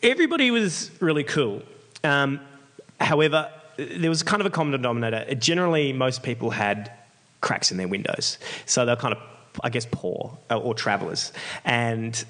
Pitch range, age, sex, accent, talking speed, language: 110-140 Hz, 20-39, male, Australian, 160 wpm, English